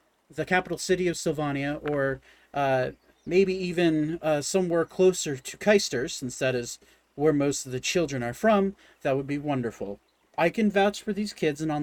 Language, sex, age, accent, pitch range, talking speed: English, male, 40-59, American, 130-165 Hz, 185 wpm